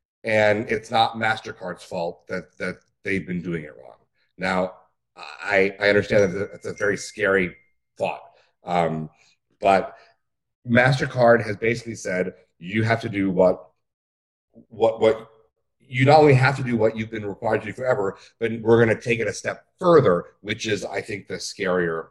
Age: 40-59